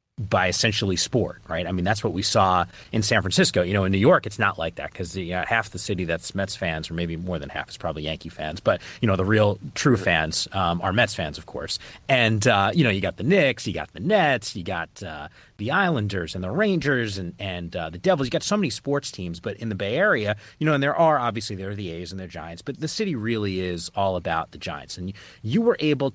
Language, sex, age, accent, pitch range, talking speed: English, male, 30-49, American, 90-115 Hz, 265 wpm